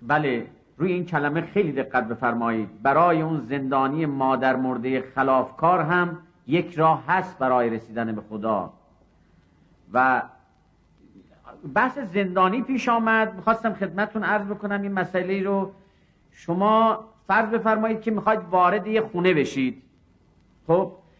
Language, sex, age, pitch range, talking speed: Persian, male, 50-69, 155-215 Hz, 120 wpm